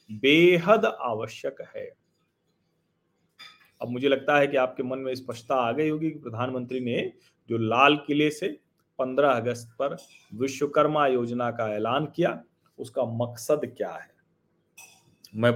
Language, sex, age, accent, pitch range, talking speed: Hindi, male, 40-59, native, 115-145 Hz, 135 wpm